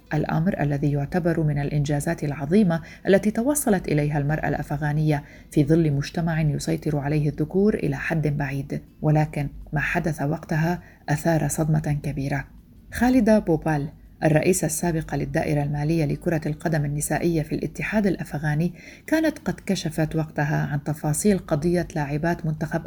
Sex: female